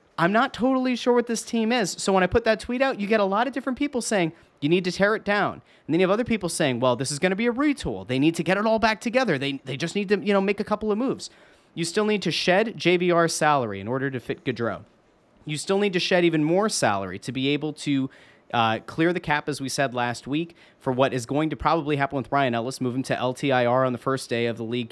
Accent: American